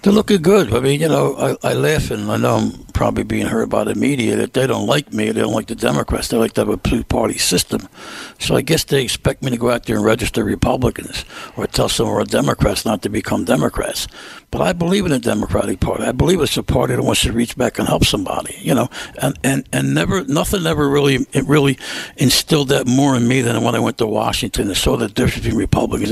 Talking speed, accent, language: 250 wpm, American, English